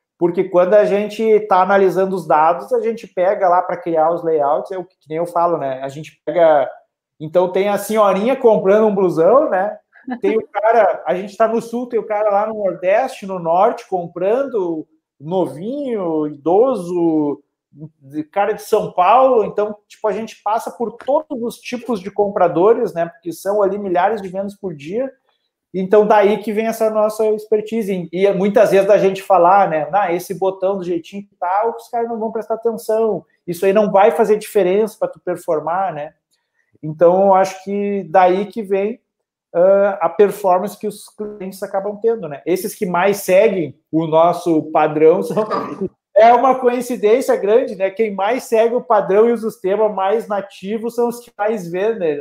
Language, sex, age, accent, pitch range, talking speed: Portuguese, male, 40-59, Brazilian, 180-220 Hz, 180 wpm